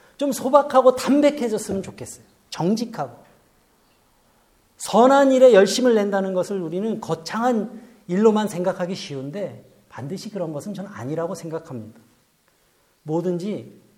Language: Korean